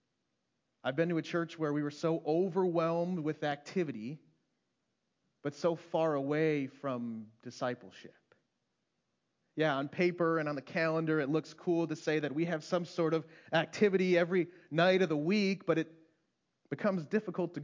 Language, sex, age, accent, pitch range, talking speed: English, male, 30-49, American, 130-165 Hz, 160 wpm